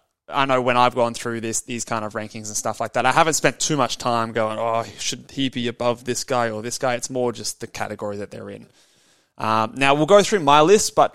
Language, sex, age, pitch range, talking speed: English, male, 20-39, 115-145 Hz, 260 wpm